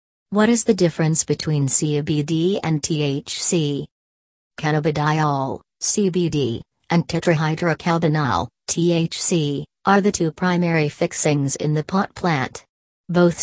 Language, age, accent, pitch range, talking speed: English, 40-59, American, 150-175 Hz, 105 wpm